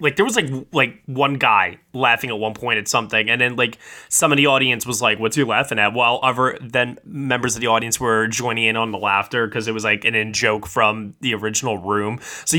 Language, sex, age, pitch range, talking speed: English, male, 20-39, 110-140 Hz, 240 wpm